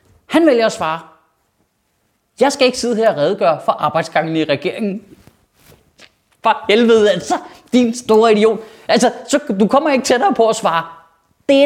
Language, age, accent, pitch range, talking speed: Danish, 30-49, native, 165-275 Hz, 160 wpm